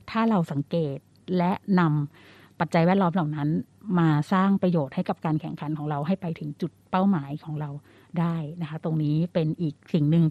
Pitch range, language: 155-190 Hz, Thai